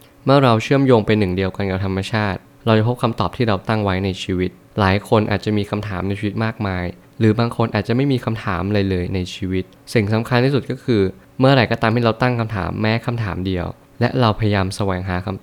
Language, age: Thai, 20-39